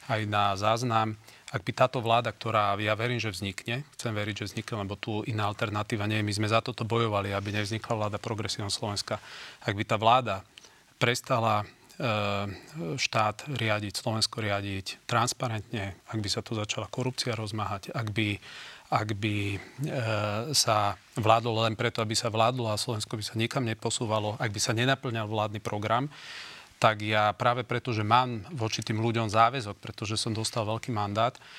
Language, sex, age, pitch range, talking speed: Slovak, male, 40-59, 105-120 Hz, 165 wpm